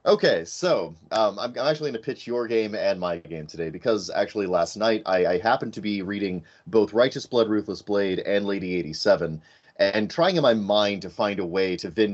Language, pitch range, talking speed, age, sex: English, 95-125 Hz, 215 wpm, 30-49, male